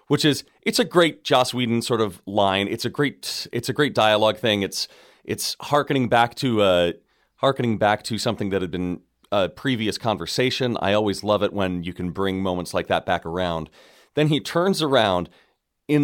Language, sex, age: English, male, 30-49